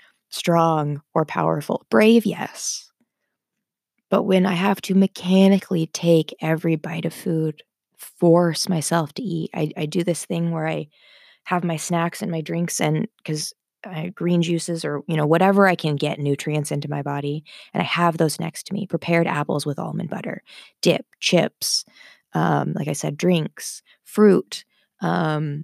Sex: female